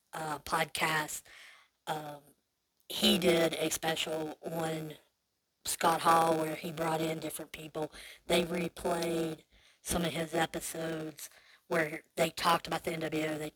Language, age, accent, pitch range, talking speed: English, 30-49, American, 155-175 Hz, 130 wpm